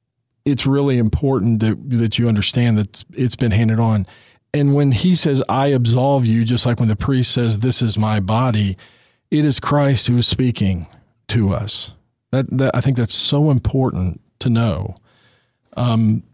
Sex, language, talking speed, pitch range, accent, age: male, English, 175 wpm, 105-125 Hz, American, 40-59